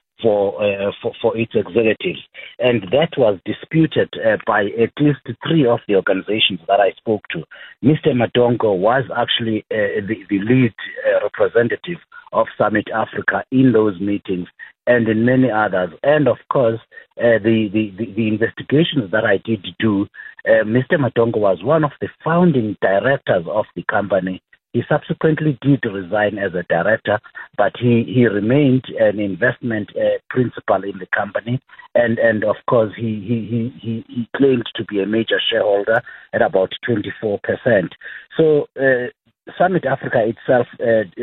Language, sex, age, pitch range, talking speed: English, male, 50-69, 105-135 Hz, 155 wpm